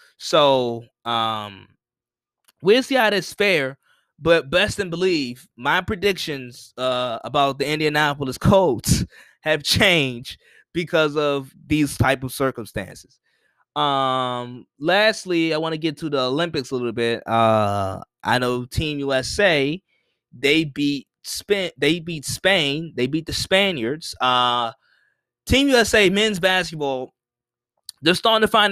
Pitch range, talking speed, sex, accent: 130-185 Hz, 130 wpm, male, American